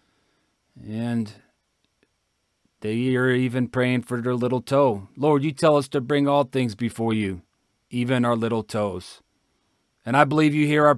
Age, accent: 40-59, American